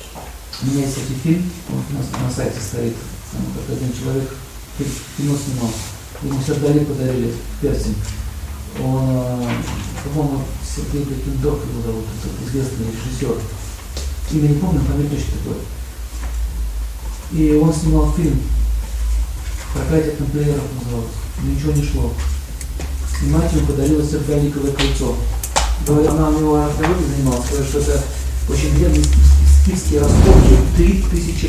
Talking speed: 130 wpm